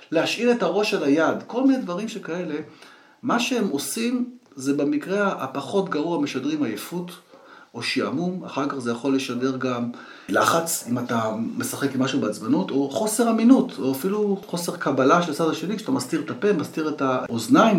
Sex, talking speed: male, 170 wpm